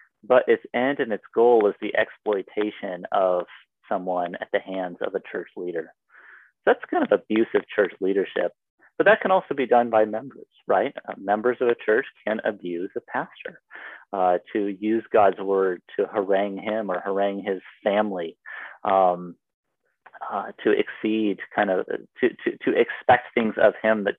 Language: English